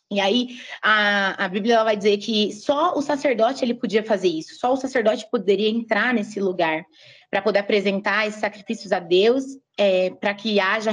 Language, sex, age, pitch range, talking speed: Portuguese, female, 20-39, 200-250 Hz, 180 wpm